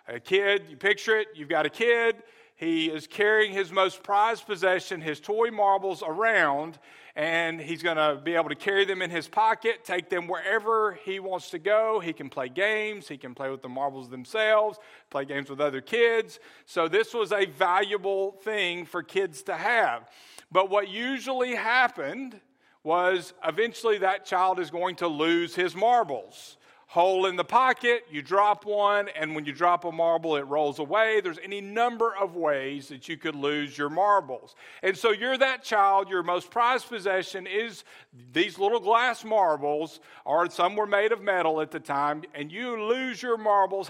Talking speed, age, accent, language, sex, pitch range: 185 wpm, 40-59, American, English, male, 165-220 Hz